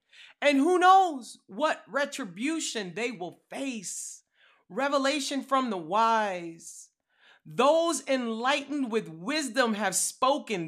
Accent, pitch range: American, 225-310 Hz